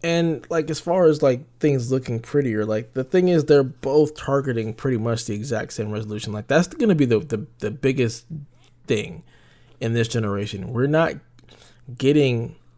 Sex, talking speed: male, 180 wpm